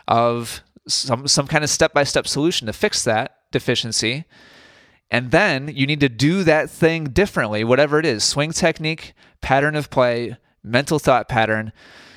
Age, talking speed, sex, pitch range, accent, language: 30-49, 155 wpm, male, 115-155 Hz, American, English